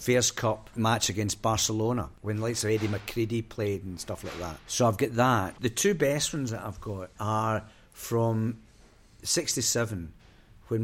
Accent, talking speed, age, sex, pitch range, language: British, 175 wpm, 50-69, male, 100-125 Hz, English